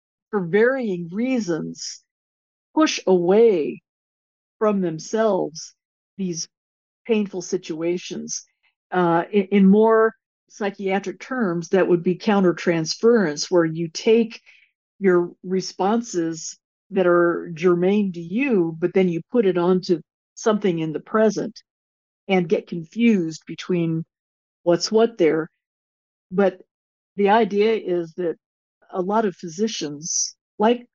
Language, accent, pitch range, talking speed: English, American, 175-220 Hz, 110 wpm